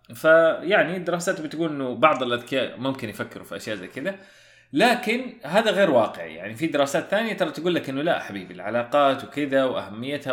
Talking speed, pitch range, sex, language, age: 170 wpm, 115-170 Hz, male, Arabic, 30-49